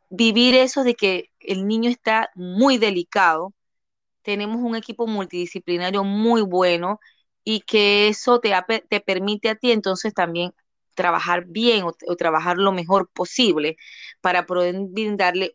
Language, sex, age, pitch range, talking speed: Spanish, female, 20-39, 190-255 Hz, 135 wpm